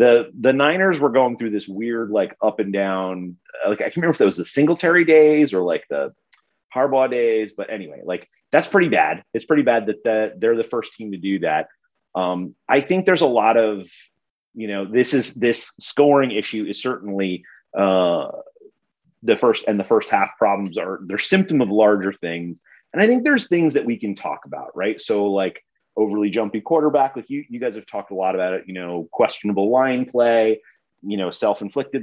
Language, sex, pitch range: English, male, 100-145 Hz